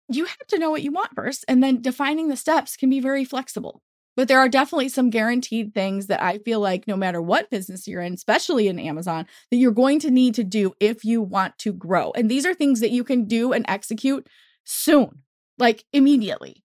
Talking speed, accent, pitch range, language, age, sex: 220 wpm, American, 210-270 Hz, English, 20-39, female